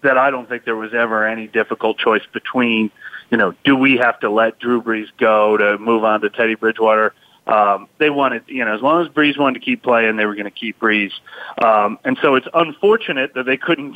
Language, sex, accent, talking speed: English, male, American, 230 wpm